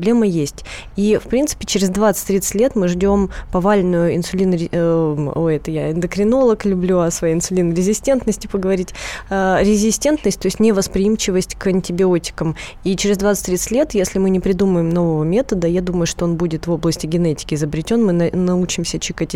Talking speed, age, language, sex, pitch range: 145 wpm, 20-39, Russian, female, 175-220 Hz